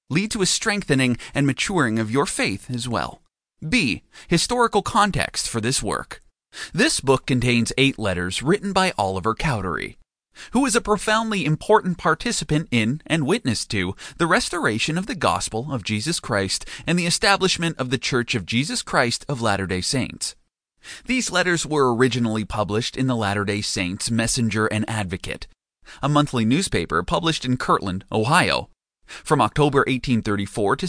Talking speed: 155 wpm